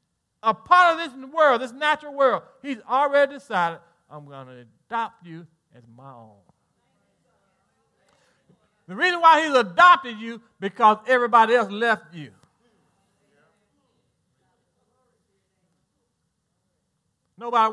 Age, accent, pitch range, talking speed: 40-59, American, 170-275 Hz, 105 wpm